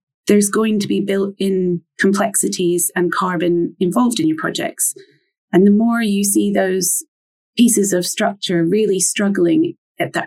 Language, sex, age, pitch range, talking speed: English, female, 30-49, 165-210 Hz, 150 wpm